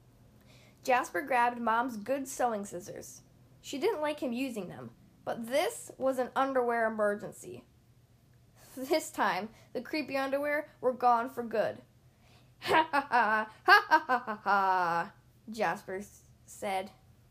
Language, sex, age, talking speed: English, female, 10-29, 120 wpm